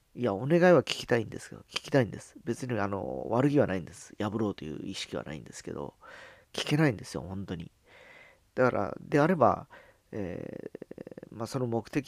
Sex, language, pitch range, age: male, Japanese, 100-130 Hz, 40-59